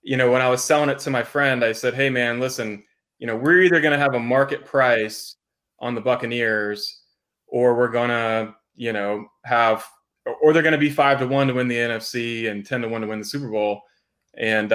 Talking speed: 230 wpm